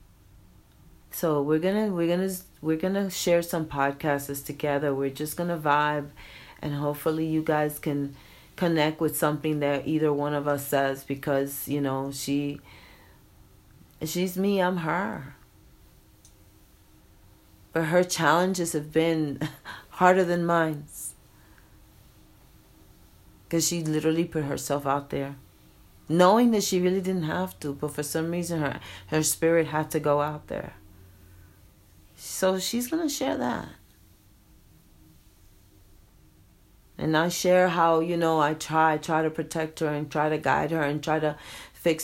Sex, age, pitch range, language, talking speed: female, 40-59, 125-160 Hz, English, 145 wpm